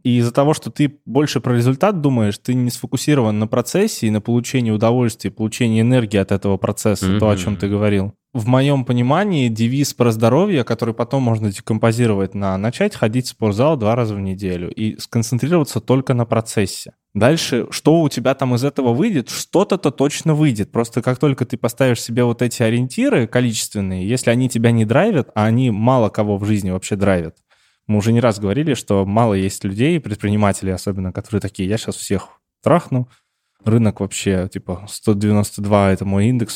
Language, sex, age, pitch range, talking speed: Russian, male, 20-39, 105-130 Hz, 180 wpm